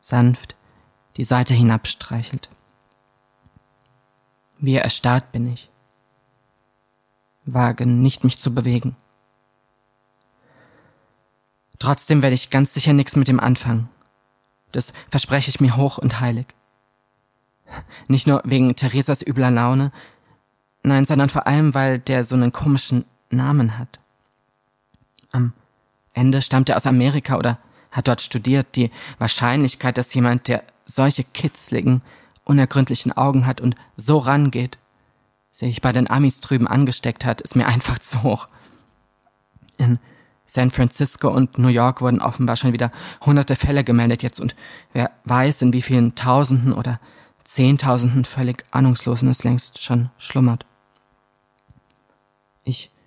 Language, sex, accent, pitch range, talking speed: German, male, German, 120-130 Hz, 125 wpm